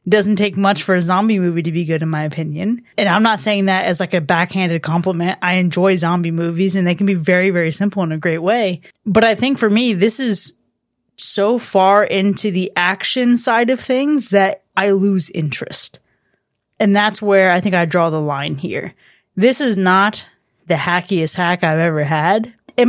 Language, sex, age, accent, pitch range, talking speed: English, female, 20-39, American, 175-205 Hz, 200 wpm